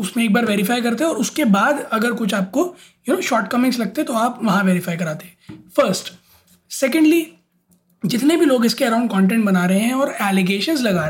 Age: 20-39